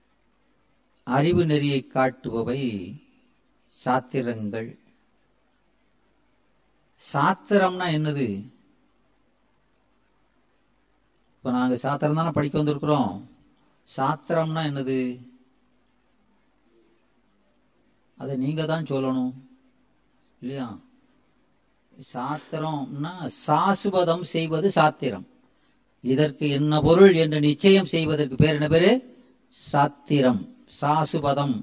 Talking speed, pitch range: 65 wpm, 130-175 Hz